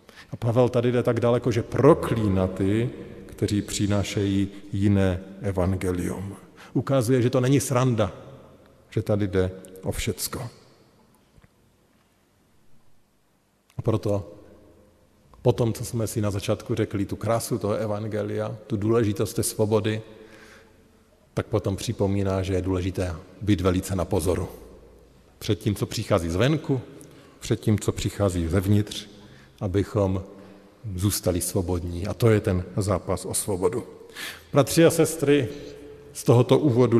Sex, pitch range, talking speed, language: male, 100-115 Hz, 120 wpm, Slovak